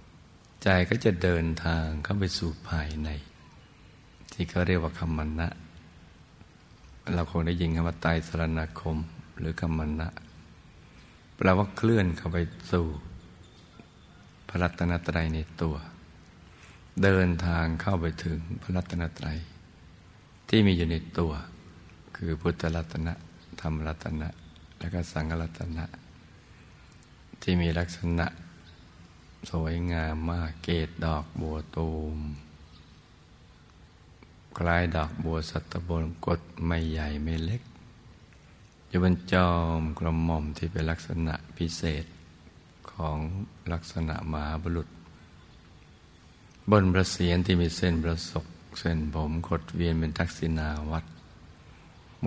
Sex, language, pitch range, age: male, Thai, 80-85 Hz, 60-79